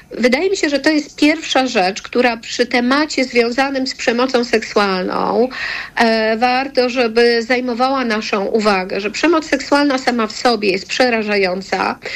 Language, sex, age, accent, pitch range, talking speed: Polish, female, 50-69, native, 225-265 Hz, 140 wpm